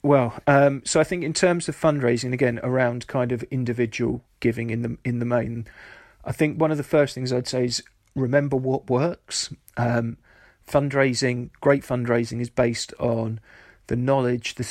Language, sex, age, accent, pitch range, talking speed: English, male, 40-59, British, 120-135 Hz, 175 wpm